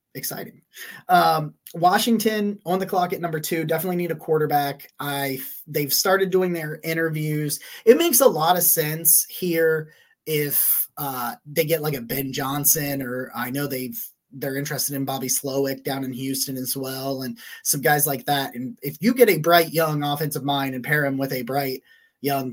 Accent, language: American, English